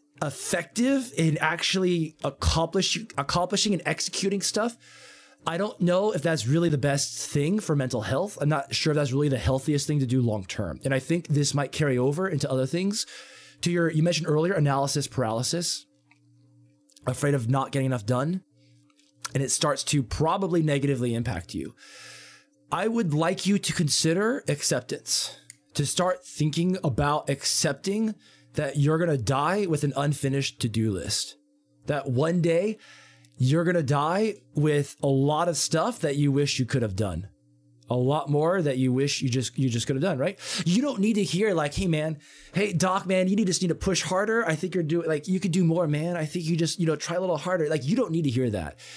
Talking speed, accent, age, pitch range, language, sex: 205 wpm, American, 20-39, 135-180 Hz, English, male